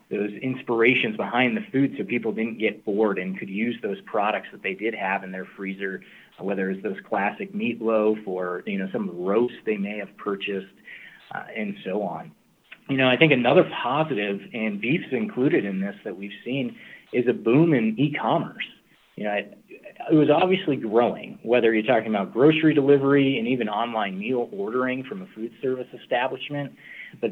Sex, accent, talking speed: male, American, 180 wpm